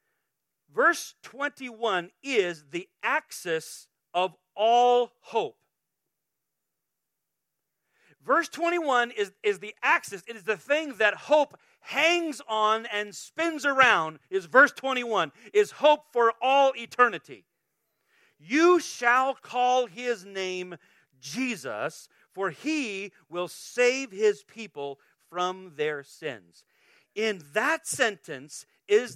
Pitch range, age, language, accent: 170-265 Hz, 40-59, English, American